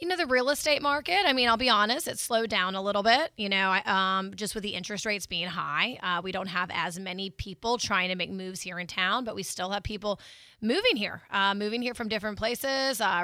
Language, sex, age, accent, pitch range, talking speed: English, female, 20-39, American, 195-235 Hz, 250 wpm